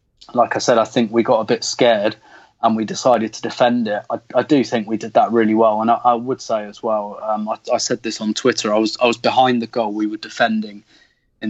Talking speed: 260 wpm